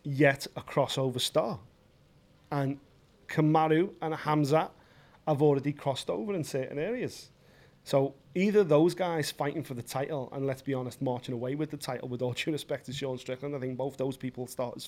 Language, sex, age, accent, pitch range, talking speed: English, male, 30-49, British, 135-160 Hz, 185 wpm